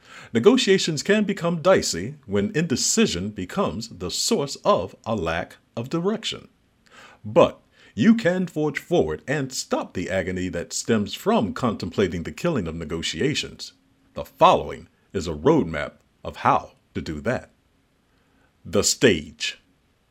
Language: English